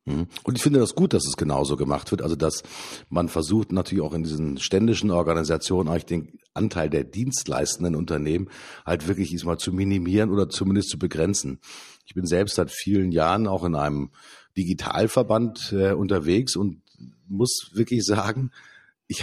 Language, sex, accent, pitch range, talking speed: German, male, German, 85-110 Hz, 160 wpm